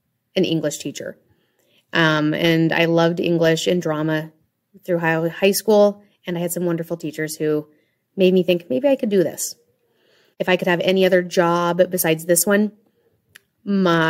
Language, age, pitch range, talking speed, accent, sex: English, 30-49, 165-210 Hz, 165 wpm, American, female